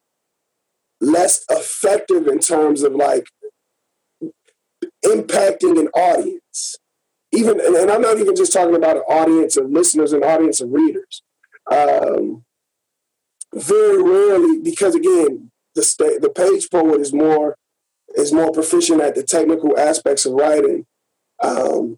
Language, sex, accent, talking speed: English, male, American, 125 wpm